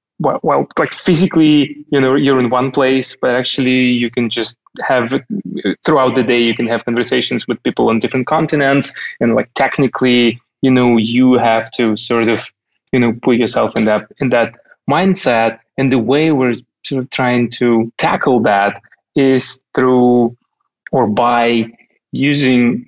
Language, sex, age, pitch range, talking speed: English, male, 20-39, 115-140 Hz, 165 wpm